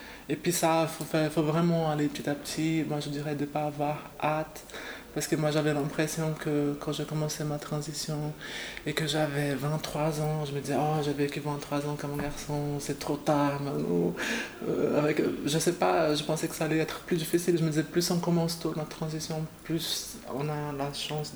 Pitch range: 145-160 Hz